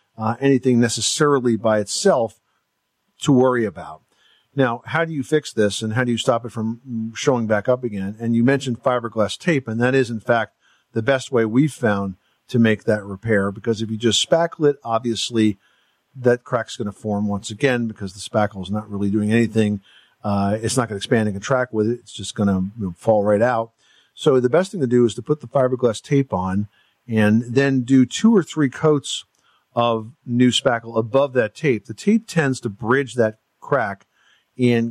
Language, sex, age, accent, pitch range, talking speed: English, male, 50-69, American, 105-130 Hz, 205 wpm